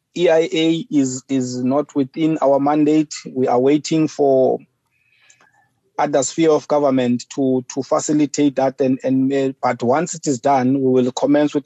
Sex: male